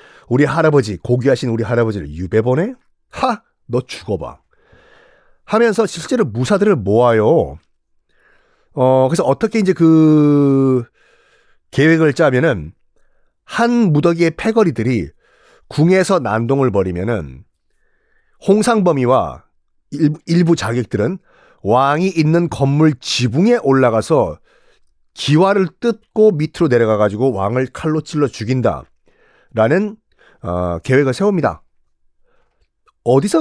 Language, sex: Korean, male